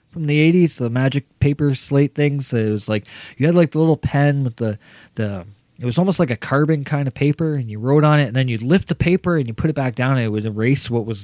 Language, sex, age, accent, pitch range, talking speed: English, male, 20-39, American, 110-145 Hz, 280 wpm